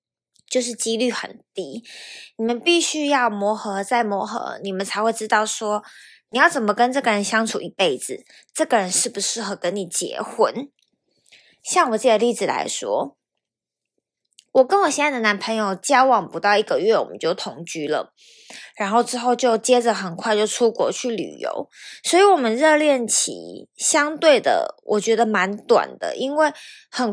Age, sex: 20-39, female